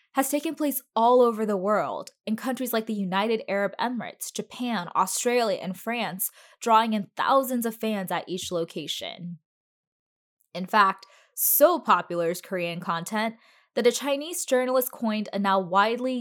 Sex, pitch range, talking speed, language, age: female, 185-245 Hz, 150 wpm, English, 10-29